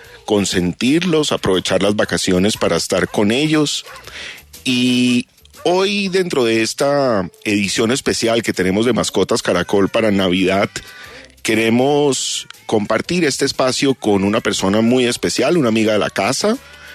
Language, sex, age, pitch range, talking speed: Spanish, male, 40-59, 95-130 Hz, 125 wpm